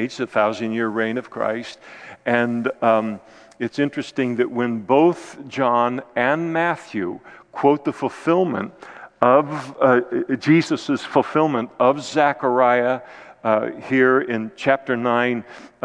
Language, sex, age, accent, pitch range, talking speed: English, male, 50-69, American, 115-140 Hz, 110 wpm